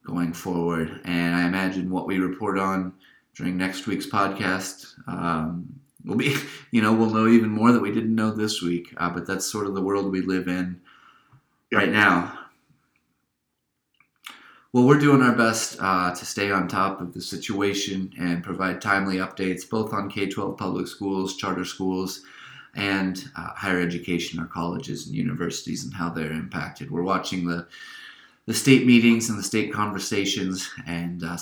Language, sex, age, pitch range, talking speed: English, male, 30-49, 90-105 Hz, 170 wpm